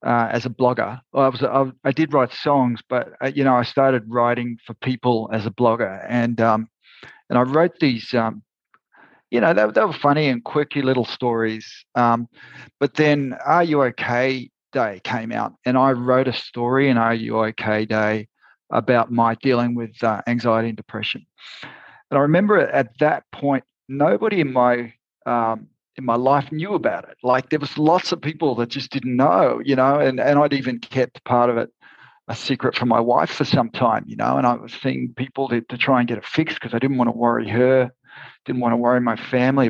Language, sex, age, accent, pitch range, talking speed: English, male, 40-59, Australian, 115-140 Hz, 210 wpm